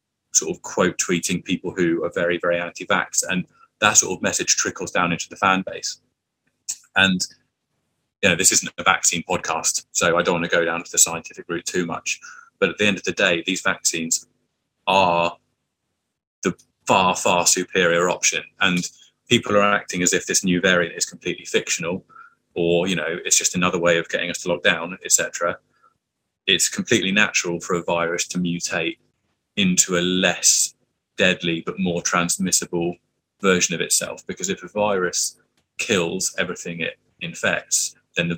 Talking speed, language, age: 175 wpm, English, 20-39